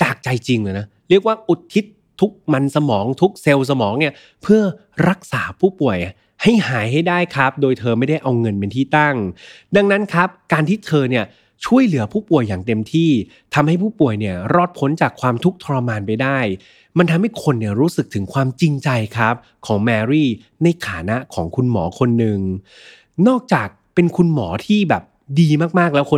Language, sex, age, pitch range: Thai, male, 20-39, 110-170 Hz